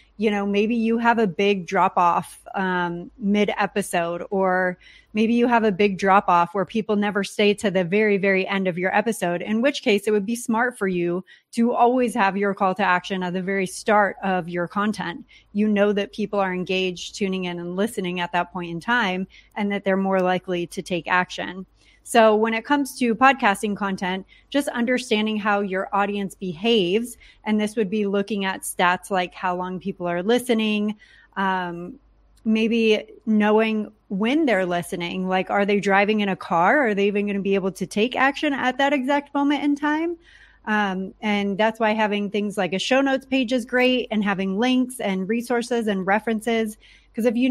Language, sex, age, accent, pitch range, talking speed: English, female, 30-49, American, 190-230 Hz, 195 wpm